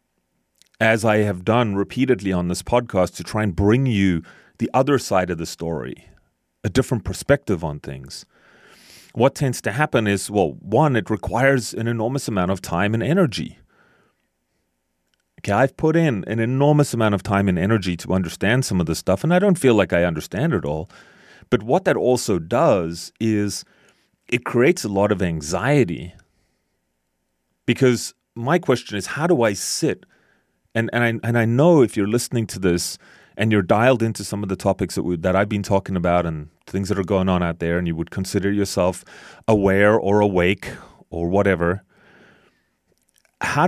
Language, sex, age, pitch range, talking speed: English, male, 30-49, 90-120 Hz, 180 wpm